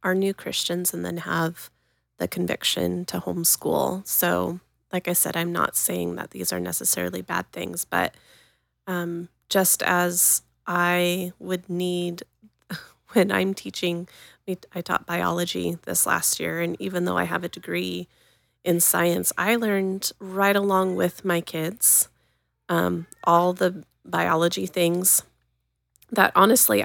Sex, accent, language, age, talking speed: female, American, English, 30-49, 140 wpm